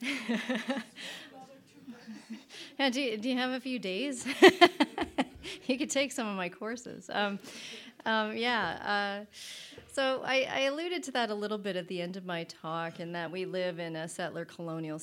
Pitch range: 165-215 Hz